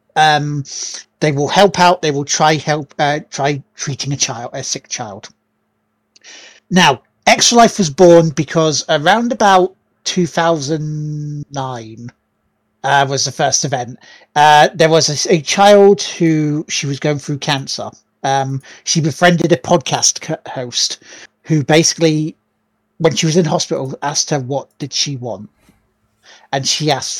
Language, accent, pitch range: English, British, 135-170 Hz